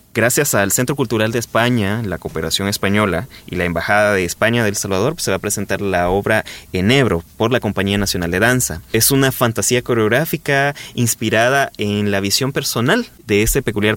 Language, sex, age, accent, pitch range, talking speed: Spanish, male, 20-39, Mexican, 100-130 Hz, 180 wpm